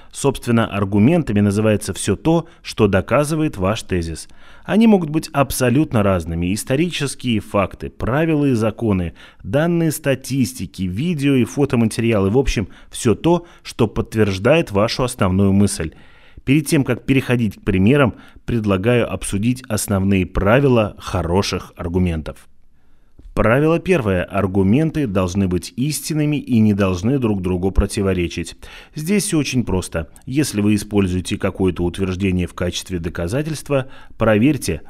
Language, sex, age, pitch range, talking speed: Russian, male, 30-49, 95-135 Hz, 120 wpm